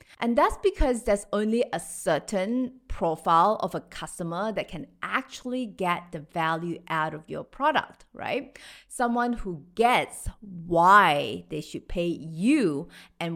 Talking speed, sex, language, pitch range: 140 wpm, female, English, 165-245 Hz